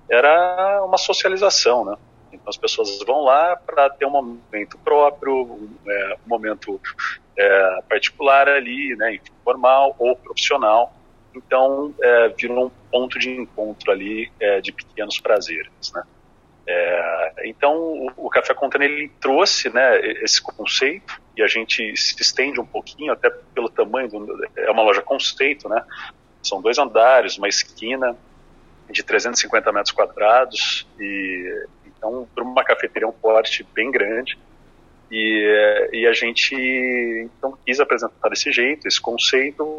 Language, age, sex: Portuguese, 40-59, male